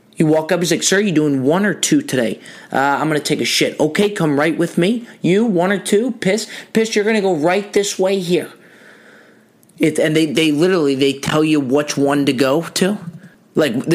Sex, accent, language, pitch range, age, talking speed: male, American, English, 130-180 Hz, 20-39, 220 wpm